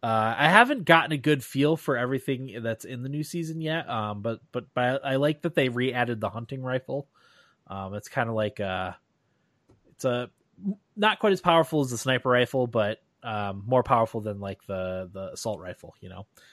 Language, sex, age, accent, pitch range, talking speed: English, male, 20-39, American, 105-145 Hz, 200 wpm